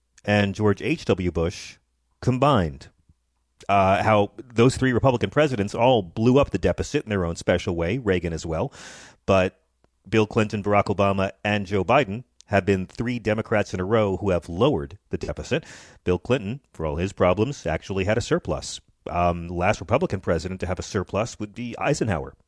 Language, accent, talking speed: English, American, 175 wpm